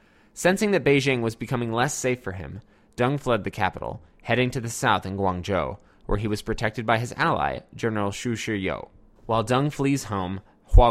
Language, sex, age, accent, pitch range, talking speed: English, male, 20-39, American, 100-135 Hz, 185 wpm